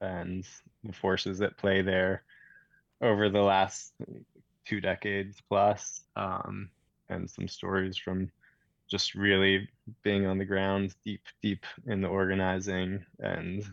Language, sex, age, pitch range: English, male, 20-39, 95-110 Hz